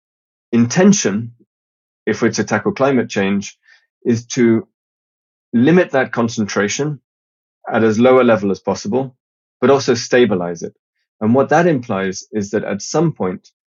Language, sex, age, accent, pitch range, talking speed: English, male, 20-39, British, 100-125 Hz, 140 wpm